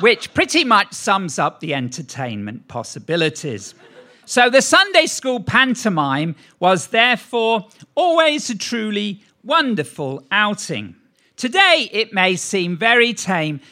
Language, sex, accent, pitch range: English, male, British, 170-250 Hz